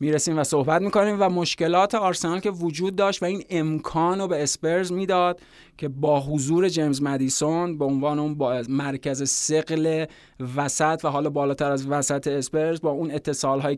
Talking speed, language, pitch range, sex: 180 wpm, Persian, 140-165 Hz, male